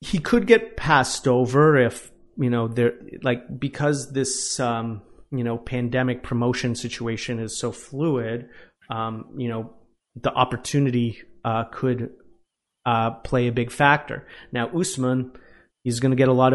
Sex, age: male, 30-49